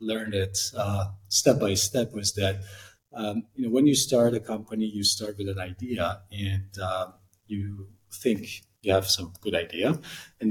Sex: male